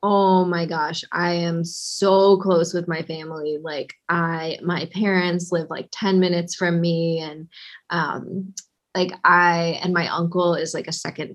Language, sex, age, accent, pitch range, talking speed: English, female, 20-39, American, 170-200 Hz, 165 wpm